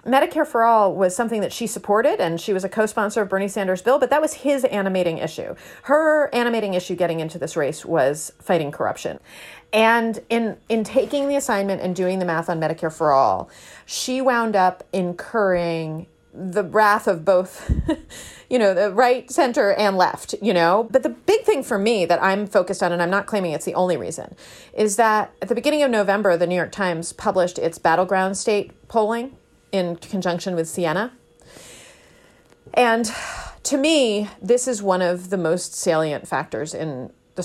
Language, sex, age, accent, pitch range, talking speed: English, female, 30-49, American, 180-235 Hz, 185 wpm